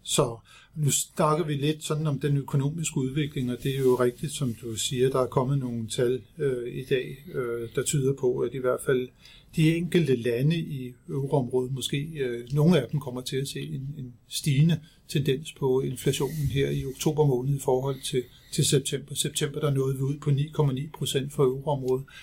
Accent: native